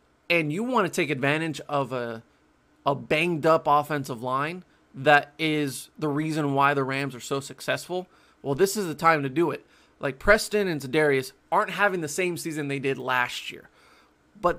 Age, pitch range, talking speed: 20-39, 140-180 Hz, 180 wpm